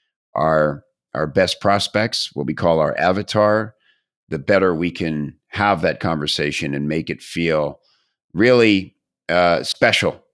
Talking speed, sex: 135 wpm, male